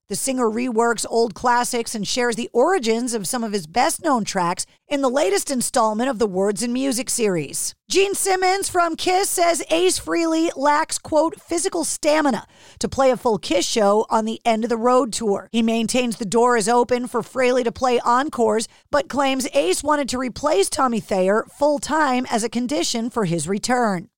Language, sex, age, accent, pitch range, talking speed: English, female, 40-59, American, 230-290 Hz, 185 wpm